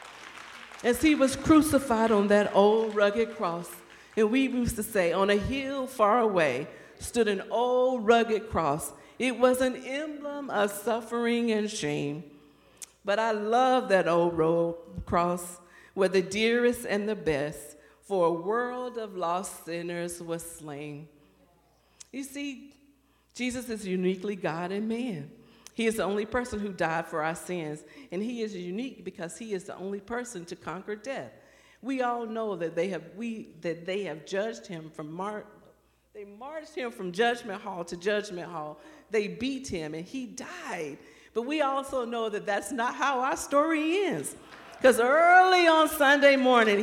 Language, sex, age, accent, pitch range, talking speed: English, female, 50-69, American, 175-245 Hz, 165 wpm